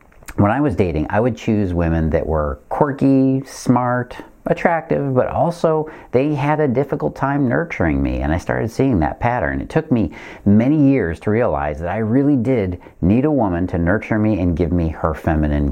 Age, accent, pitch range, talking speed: 40-59, American, 85-125 Hz, 190 wpm